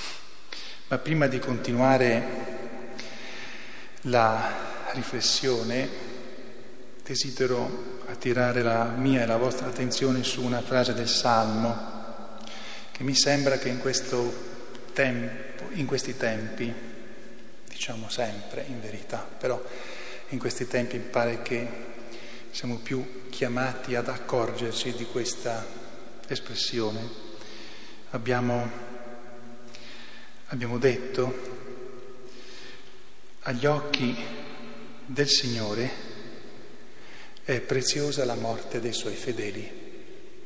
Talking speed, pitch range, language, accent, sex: 90 wpm, 120-130 Hz, Italian, native, male